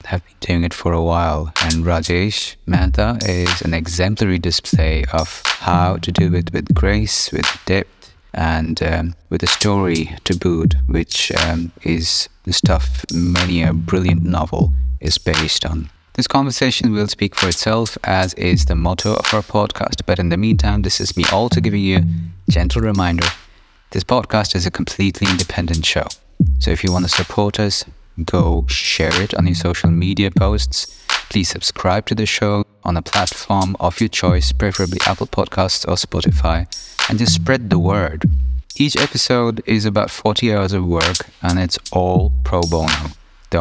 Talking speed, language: 170 wpm, English